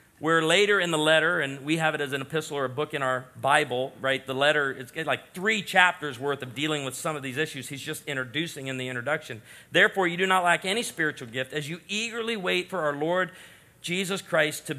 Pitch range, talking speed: 155-200 Hz, 230 wpm